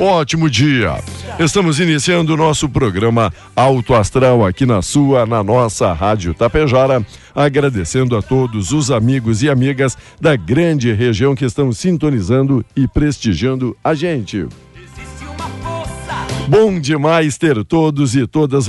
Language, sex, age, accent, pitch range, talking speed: Portuguese, male, 60-79, Brazilian, 125-155 Hz, 125 wpm